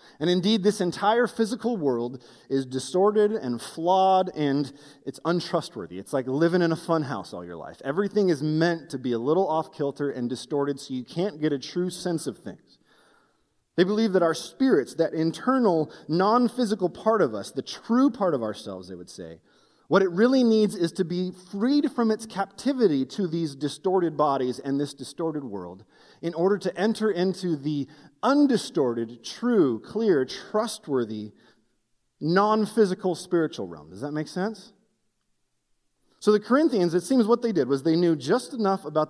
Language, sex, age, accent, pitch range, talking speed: English, male, 30-49, American, 140-205 Hz, 170 wpm